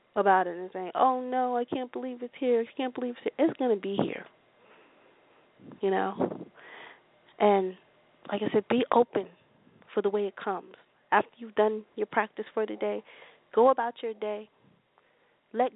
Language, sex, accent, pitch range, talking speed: English, female, American, 190-235 Hz, 180 wpm